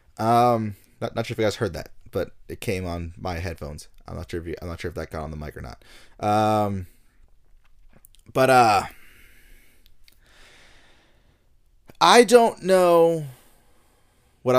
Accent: American